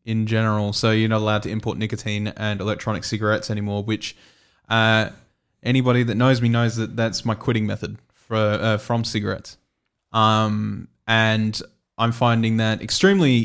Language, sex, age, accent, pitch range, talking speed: English, male, 20-39, Australian, 110-120 Hz, 155 wpm